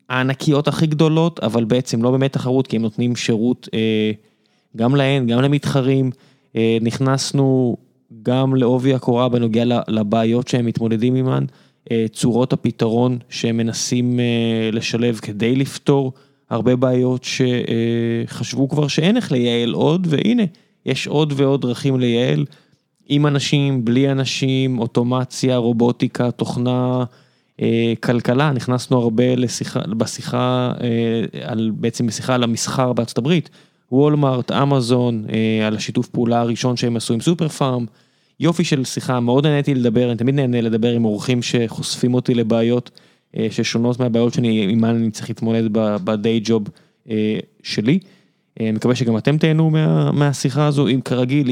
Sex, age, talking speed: male, 20-39, 135 wpm